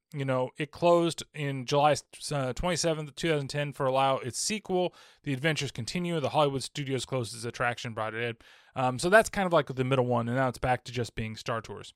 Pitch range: 130-180 Hz